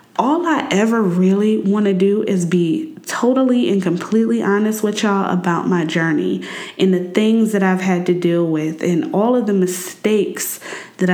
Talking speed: 180 wpm